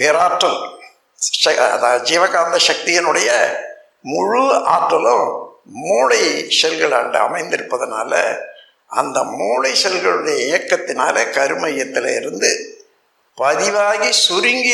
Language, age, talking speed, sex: Tamil, 60-79, 65 wpm, male